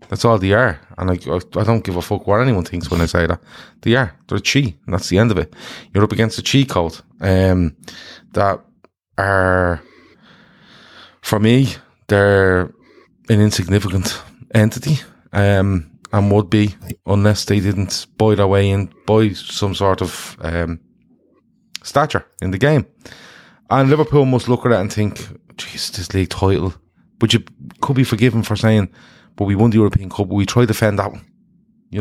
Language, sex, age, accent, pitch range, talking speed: English, male, 20-39, Irish, 90-115 Hz, 180 wpm